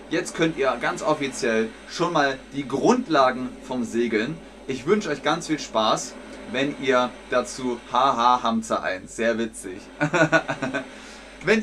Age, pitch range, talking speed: 30-49, 120-175 Hz, 140 wpm